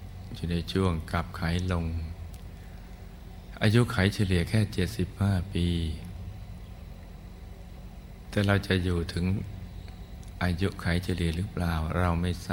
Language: Thai